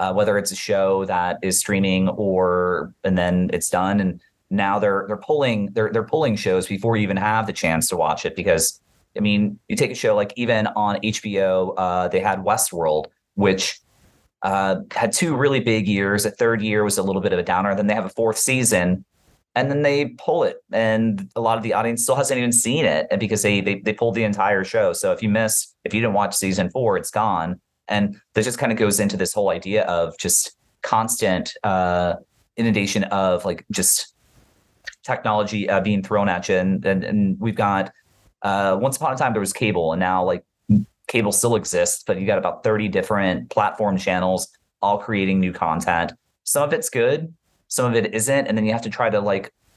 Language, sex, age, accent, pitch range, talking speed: English, male, 30-49, American, 95-110 Hz, 215 wpm